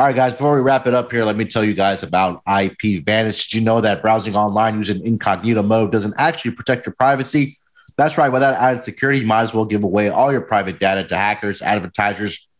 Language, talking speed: English, 230 wpm